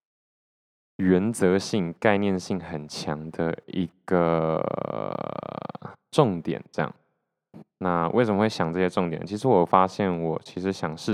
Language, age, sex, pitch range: Chinese, 20-39, male, 85-95 Hz